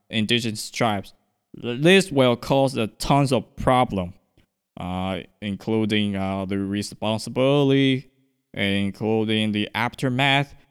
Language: Chinese